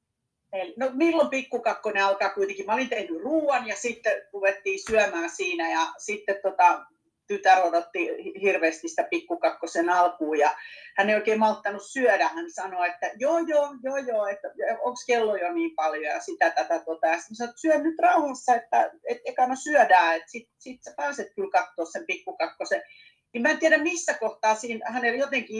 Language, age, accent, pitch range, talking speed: Finnish, 40-59, native, 215-340 Hz, 155 wpm